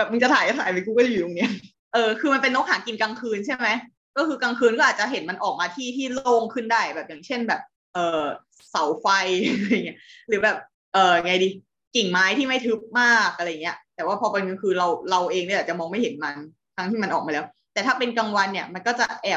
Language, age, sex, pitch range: Thai, 20-39, female, 175-240 Hz